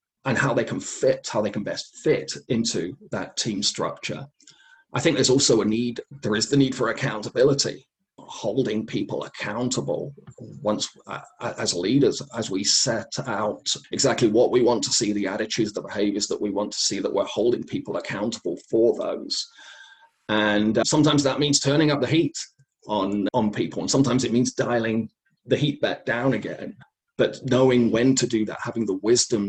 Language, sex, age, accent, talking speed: English, male, 30-49, British, 180 wpm